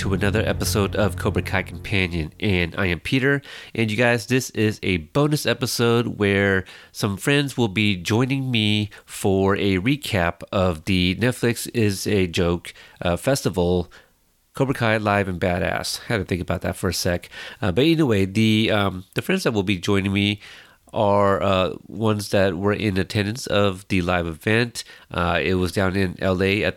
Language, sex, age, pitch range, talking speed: English, male, 30-49, 90-110 Hz, 175 wpm